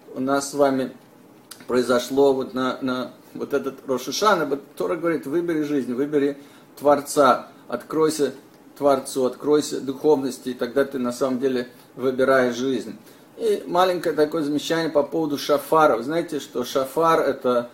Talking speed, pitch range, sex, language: 135 wpm, 130-150 Hz, male, Russian